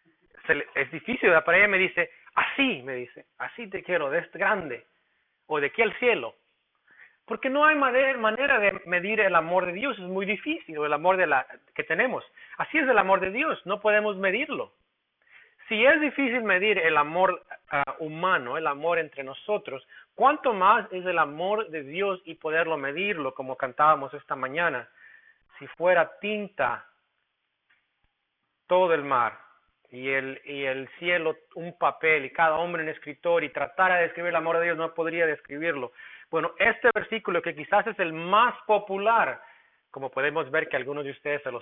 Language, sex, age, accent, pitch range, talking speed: English, male, 40-59, Mexican, 155-235 Hz, 175 wpm